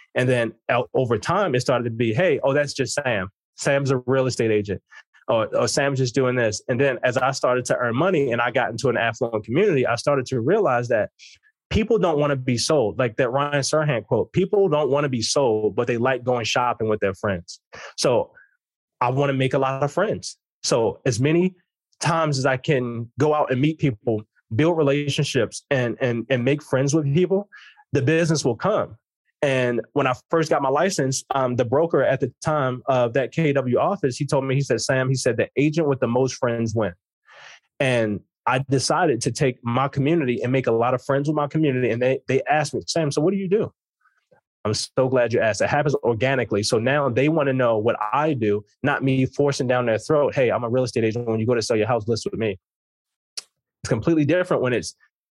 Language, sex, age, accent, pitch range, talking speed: English, male, 20-39, American, 120-150 Hz, 225 wpm